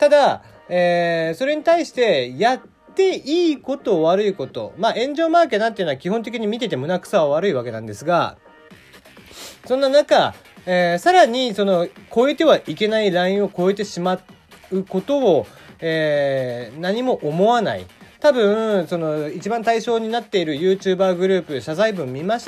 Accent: native